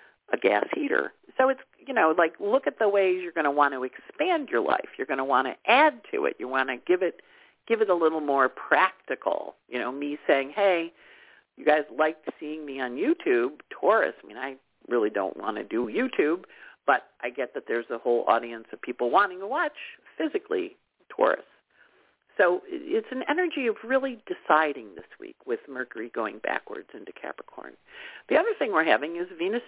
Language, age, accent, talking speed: English, 50-69, American, 200 wpm